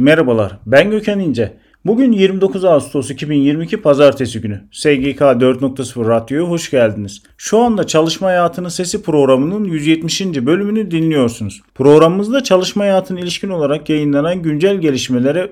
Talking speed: 120 wpm